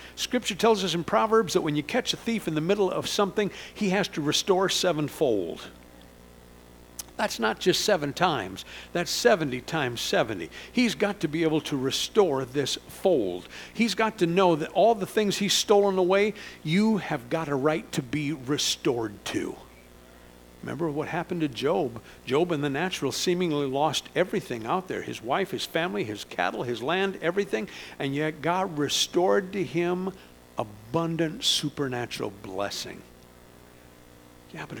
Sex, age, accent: male, 60-79, American